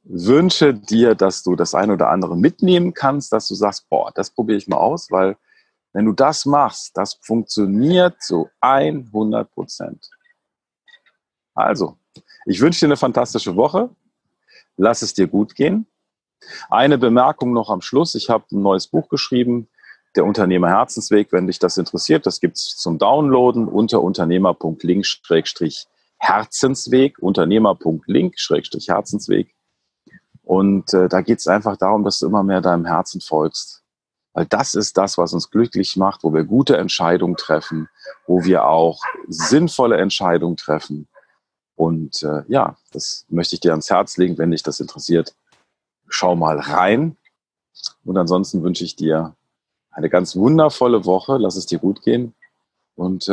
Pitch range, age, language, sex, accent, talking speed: 85-125 Hz, 40-59, German, male, German, 150 wpm